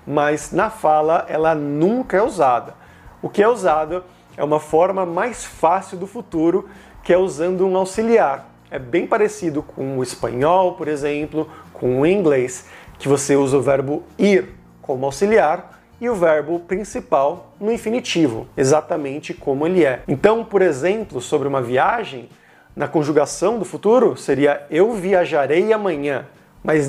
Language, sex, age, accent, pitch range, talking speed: Portuguese, male, 30-49, Brazilian, 140-180 Hz, 150 wpm